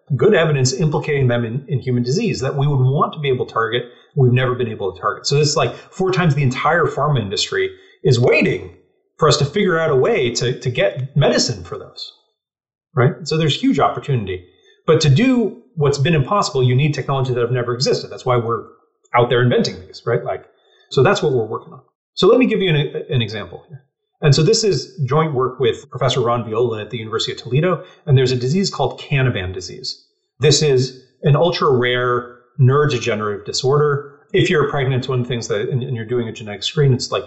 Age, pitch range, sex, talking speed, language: 30-49, 125-185 Hz, male, 215 wpm, English